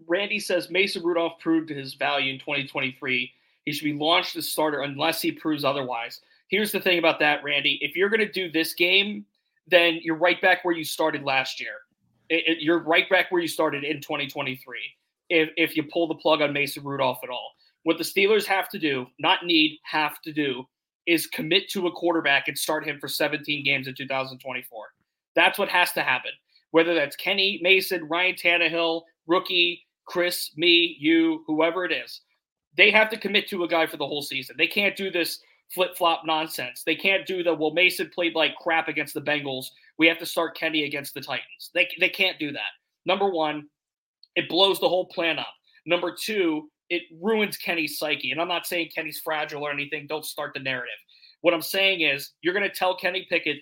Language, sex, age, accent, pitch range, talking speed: English, male, 30-49, American, 150-180 Hz, 200 wpm